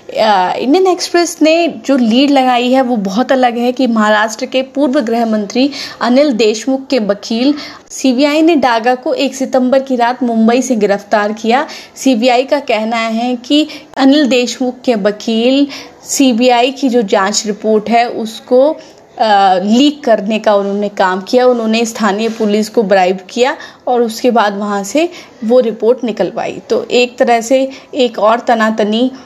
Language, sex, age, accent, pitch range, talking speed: Hindi, female, 20-39, native, 220-270 Hz, 160 wpm